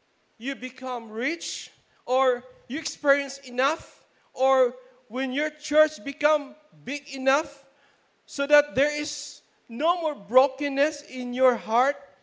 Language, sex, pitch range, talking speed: English, male, 230-280 Hz, 120 wpm